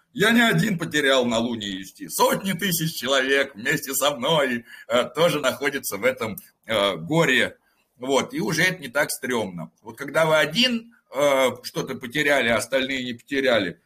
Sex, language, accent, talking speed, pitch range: male, Russian, native, 160 wpm, 130-195 Hz